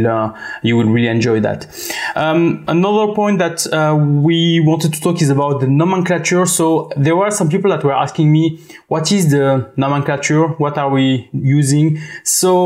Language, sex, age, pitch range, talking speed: English, male, 20-39, 130-165 Hz, 175 wpm